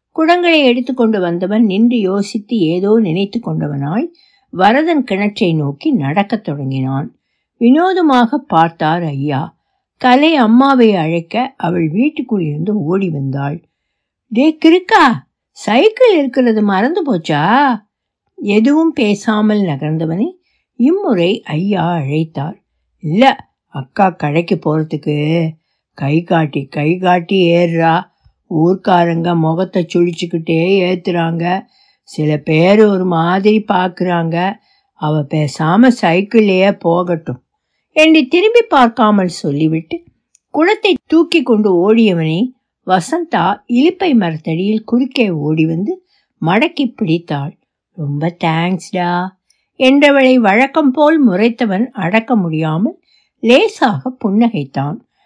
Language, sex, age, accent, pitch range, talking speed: Tamil, female, 60-79, native, 165-255 Hz, 90 wpm